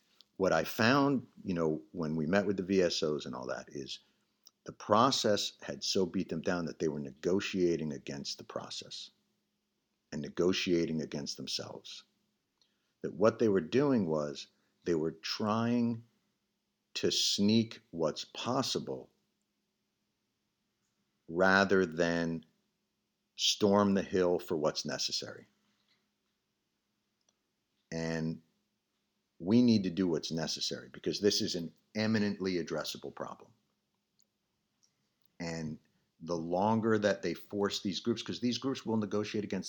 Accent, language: American, English